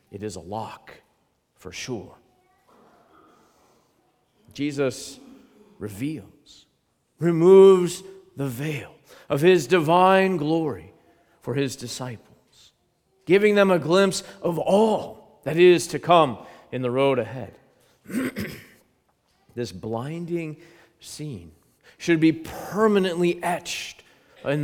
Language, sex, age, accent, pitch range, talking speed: English, male, 40-59, American, 140-195 Hz, 95 wpm